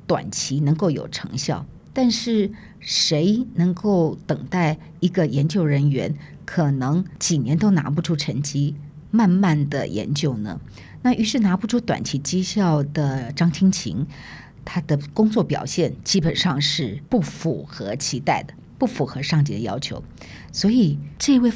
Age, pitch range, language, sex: 50-69, 145-180 Hz, Chinese, female